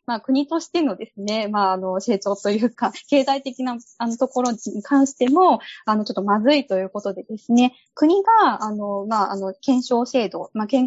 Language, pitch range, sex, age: Japanese, 210-280 Hz, female, 20-39